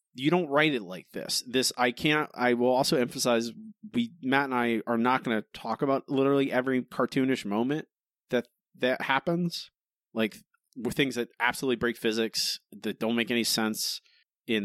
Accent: American